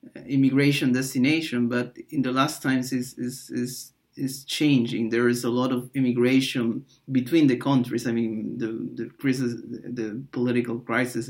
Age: 30-49